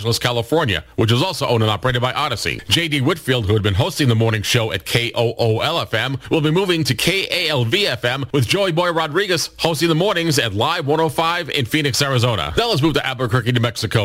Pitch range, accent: 115-145 Hz, American